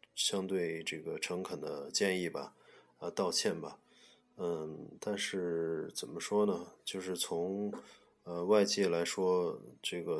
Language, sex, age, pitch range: Chinese, male, 20-39, 85-105 Hz